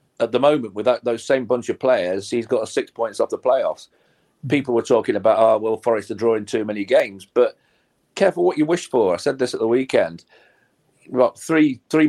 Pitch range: 110-140 Hz